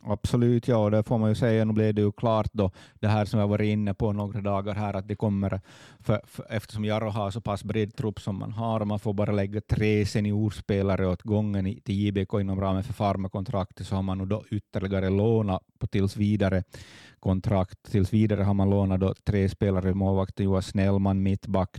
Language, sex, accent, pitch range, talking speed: Swedish, male, Finnish, 95-105 Hz, 200 wpm